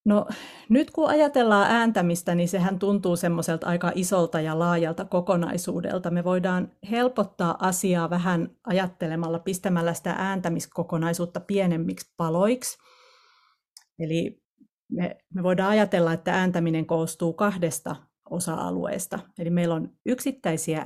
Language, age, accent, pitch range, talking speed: Finnish, 50-69, native, 170-205 Hz, 110 wpm